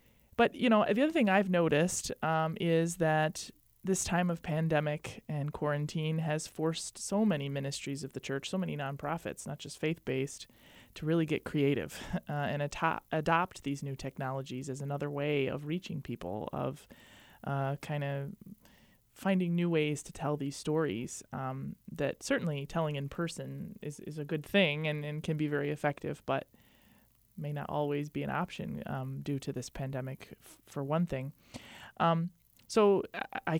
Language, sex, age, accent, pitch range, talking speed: English, male, 20-39, American, 140-170 Hz, 170 wpm